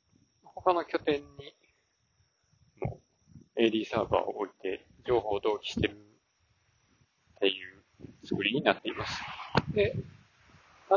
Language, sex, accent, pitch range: Japanese, male, native, 105-165 Hz